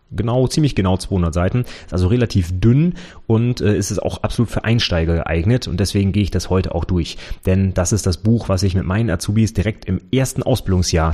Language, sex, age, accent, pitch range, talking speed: German, male, 30-49, German, 90-110 Hz, 205 wpm